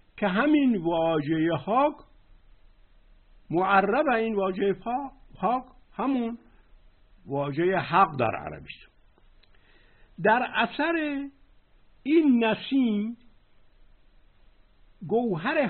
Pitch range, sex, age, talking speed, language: 145-235 Hz, male, 60-79, 70 wpm, Persian